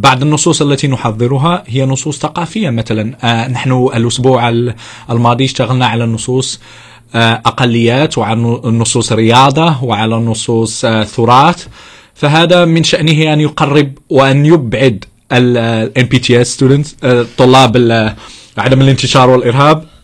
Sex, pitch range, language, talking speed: male, 115-145 Hz, English, 100 wpm